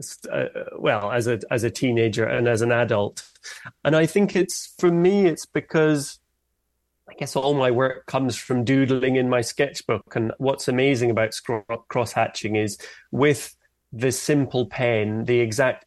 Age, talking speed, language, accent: 30-49, 165 wpm, English, British